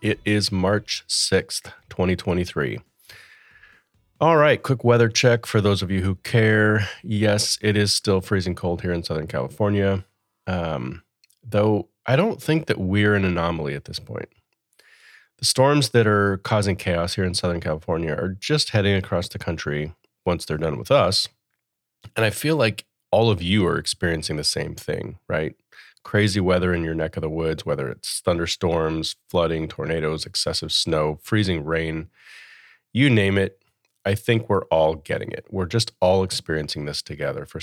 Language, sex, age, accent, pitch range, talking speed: English, male, 30-49, American, 85-105 Hz, 165 wpm